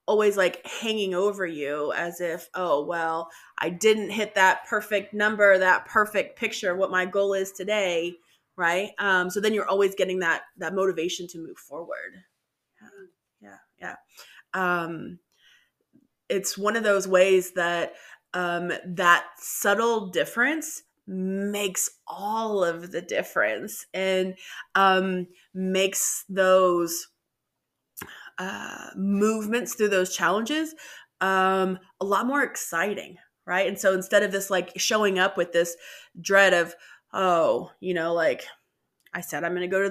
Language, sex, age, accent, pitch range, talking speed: English, female, 20-39, American, 170-200 Hz, 140 wpm